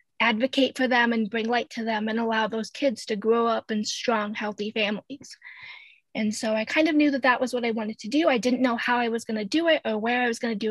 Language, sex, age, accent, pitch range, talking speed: English, female, 20-39, American, 225-280 Hz, 280 wpm